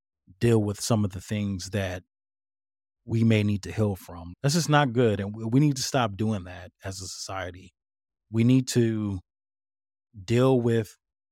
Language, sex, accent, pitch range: English, male, American, 95-110 Hz